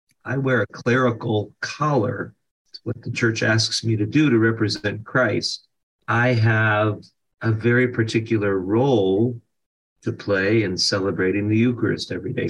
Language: English